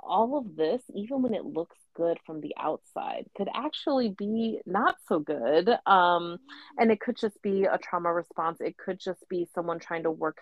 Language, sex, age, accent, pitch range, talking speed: English, female, 30-49, American, 150-200 Hz, 195 wpm